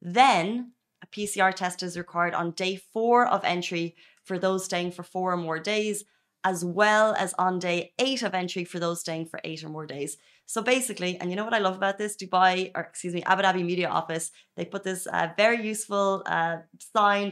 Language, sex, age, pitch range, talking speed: Arabic, female, 20-39, 170-200 Hz, 210 wpm